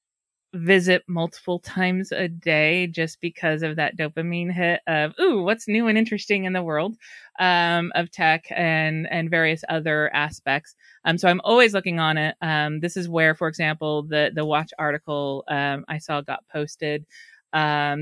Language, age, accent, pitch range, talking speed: English, 30-49, American, 150-175 Hz, 170 wpm